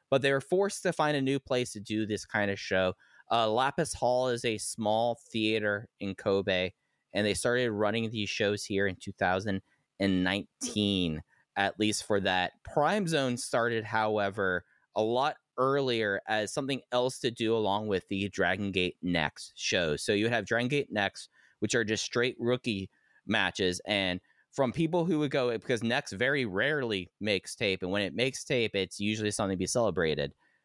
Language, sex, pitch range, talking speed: English, male, 100-130 Hz, 180 wpm